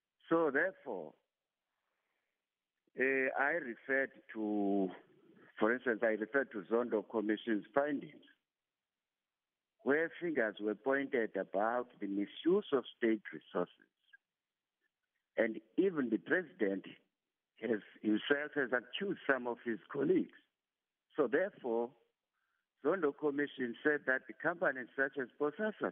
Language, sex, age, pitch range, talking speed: English, male, 60-79, 110-150 Hz, 110 wpm